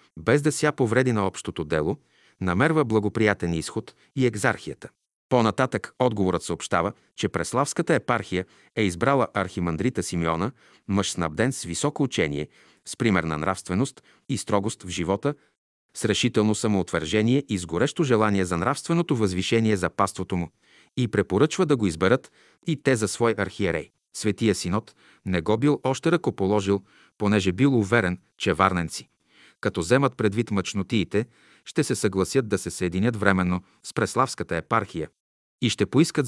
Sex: male